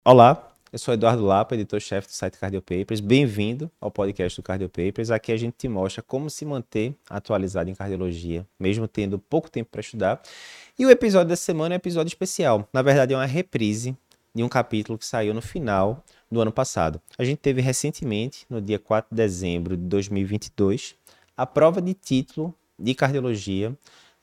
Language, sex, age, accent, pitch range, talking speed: Portuguese, male, 20-39, Brazilian, 100-140 Hz, 180 wpm